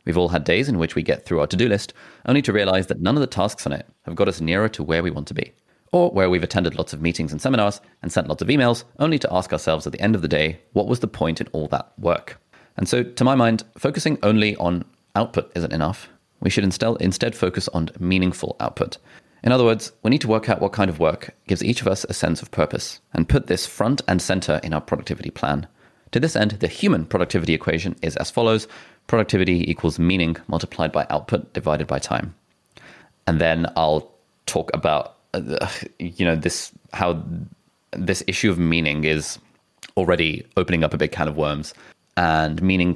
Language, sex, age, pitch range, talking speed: English, male, 30-49, 80-100 Hz, 215 wpm